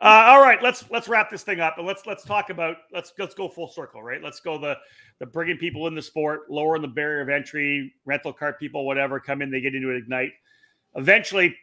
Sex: male